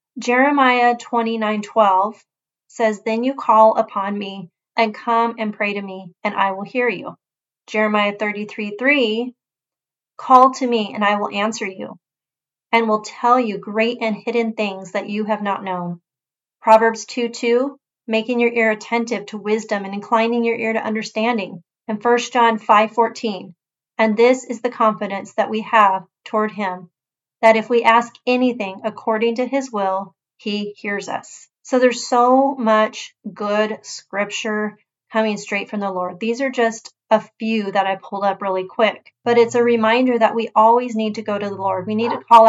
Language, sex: English, female